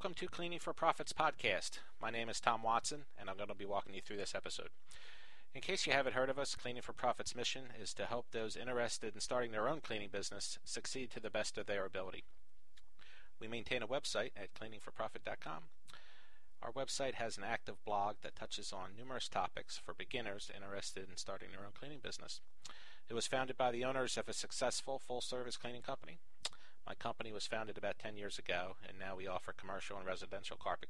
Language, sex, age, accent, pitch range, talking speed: English, male, 40-59, American, 100-125 Hz, 200 wpm